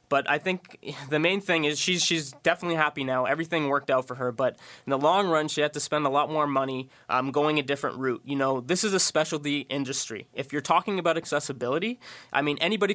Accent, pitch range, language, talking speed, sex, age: American, 135-160 Hz, English, 230 wpm, male, 20-39